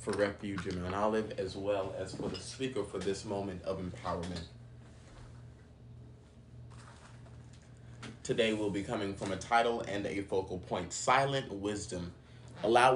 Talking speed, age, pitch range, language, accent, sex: 135 wpm, 30-49, 105-120 Hz, English, American, male